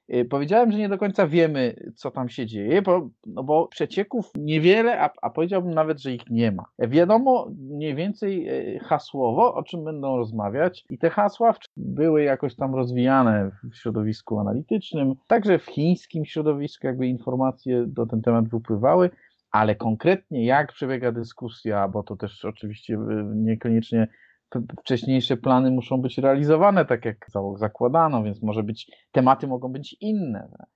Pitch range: 110-155 Hz